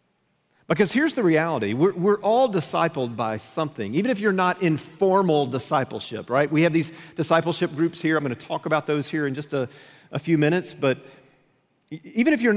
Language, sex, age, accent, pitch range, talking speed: English, male, 40-59, American, 140-190 Hz, 190 wpm